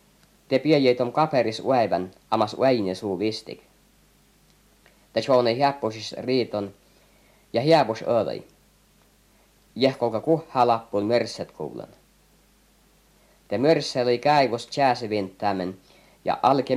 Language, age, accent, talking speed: Finnish, 50-69, native, 95 wpm